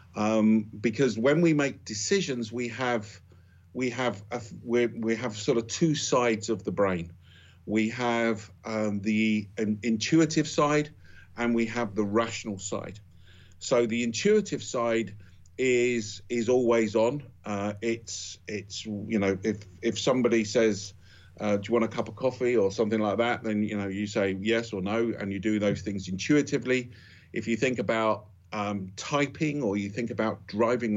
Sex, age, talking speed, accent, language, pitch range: male, 50-69, 170 wpm, British, English, 100-120 Hz